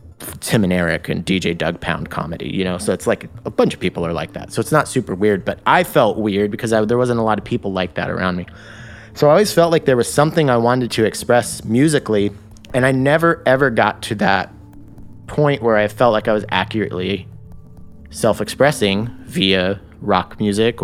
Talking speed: 205 wpm